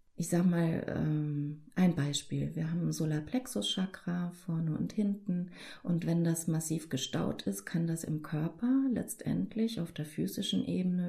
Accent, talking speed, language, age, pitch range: German, 150 wpm, German, 30-49, 150-180 Hz